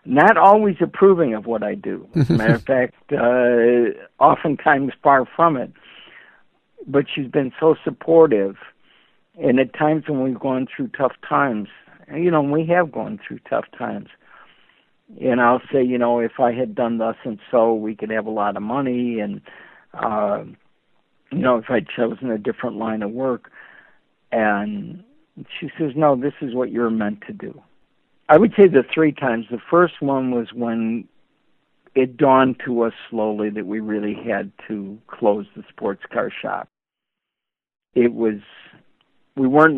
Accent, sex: American, male